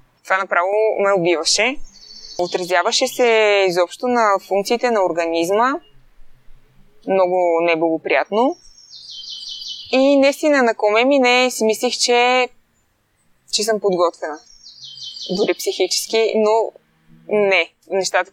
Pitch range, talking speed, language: 175-230 Hz, 100 wpm, Bulgarian